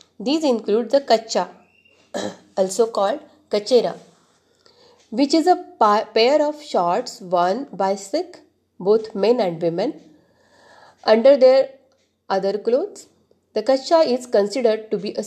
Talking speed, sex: 120 wpm, female